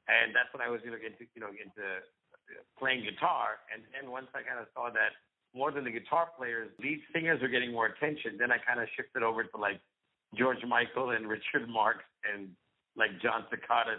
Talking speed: 210 wpm